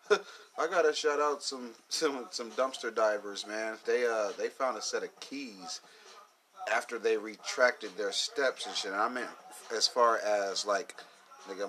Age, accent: 30-49, American